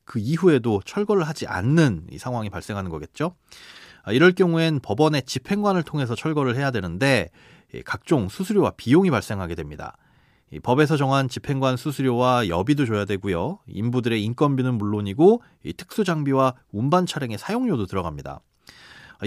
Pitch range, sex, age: 105-160 Hz, male, 30-49